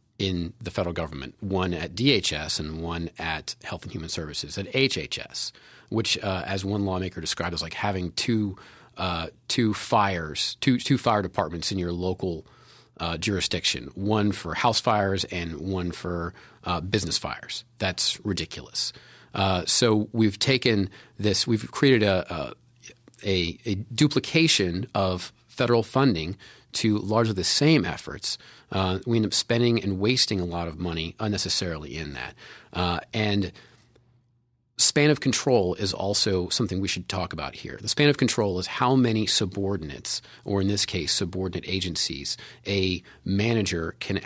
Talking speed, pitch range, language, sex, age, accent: 150 wpm, 90-115 Hz, English, male, 30-49, American